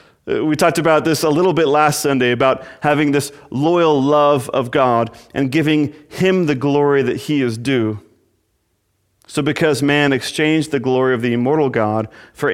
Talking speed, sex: 170 wpm, male